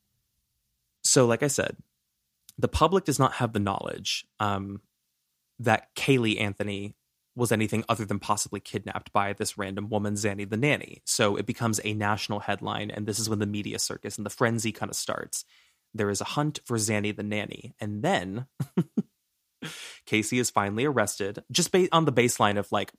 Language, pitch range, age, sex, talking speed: English, 100-120 Hz, 20-39, male, 175 wpm